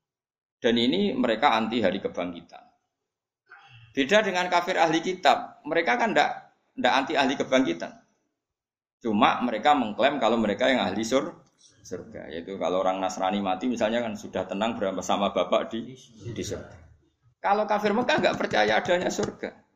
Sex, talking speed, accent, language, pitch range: male, 135 wpm, native, Indonesian, 105-145 Hz